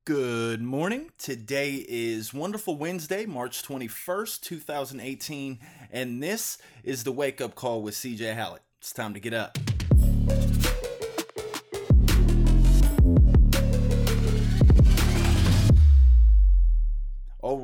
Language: English